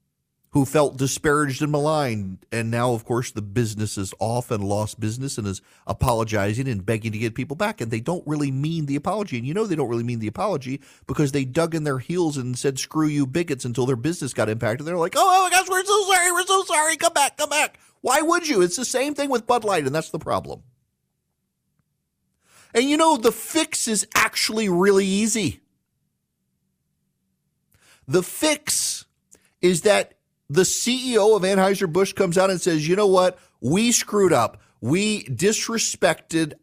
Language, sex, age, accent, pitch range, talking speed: English, male, 40-59, American, 135-205 Hz, 190 wpm